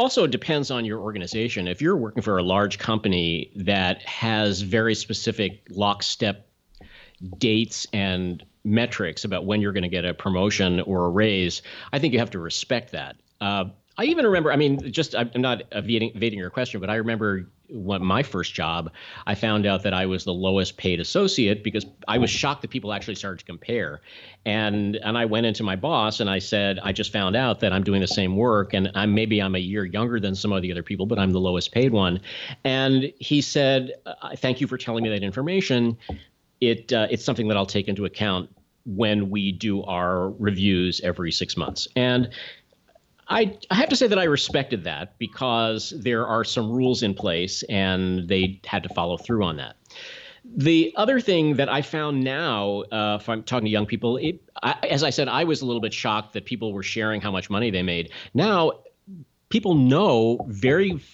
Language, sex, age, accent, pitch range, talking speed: English, male, 40-59, American, 95-125 Hz, 200 wpm